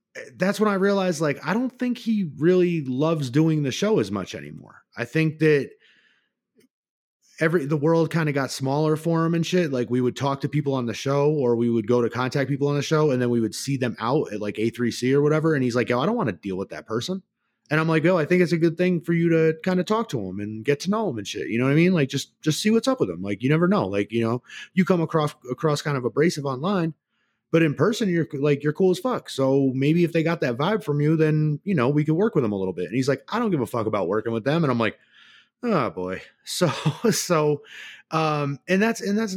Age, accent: 30-49, American